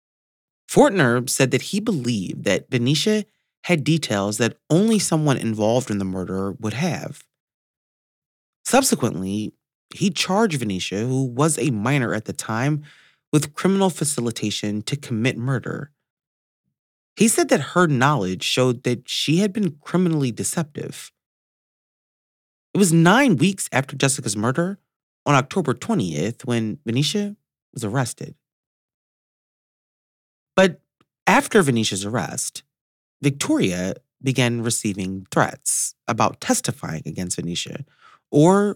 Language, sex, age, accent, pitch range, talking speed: English, male, 30-49, American, 110-165 Hz, 115 wpm